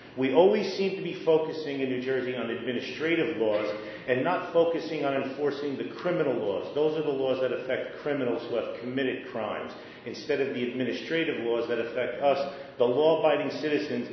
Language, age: English, 40-59